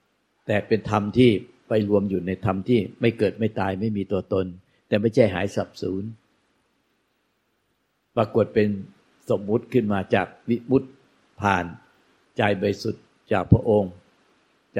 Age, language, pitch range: 60-79, Thai, 95-110 Hz